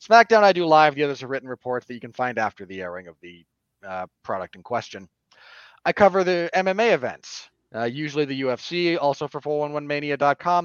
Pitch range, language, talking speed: 120-150 Hz, English, 190 wpm